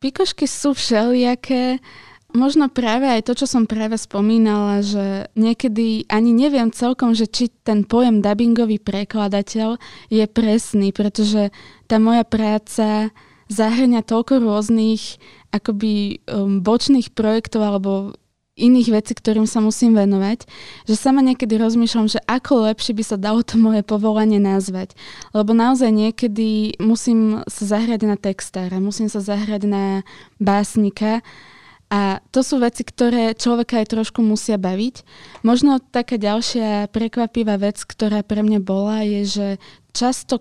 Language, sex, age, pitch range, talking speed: Slovak, female, 20-39, 205-235 Hz, 135 wpm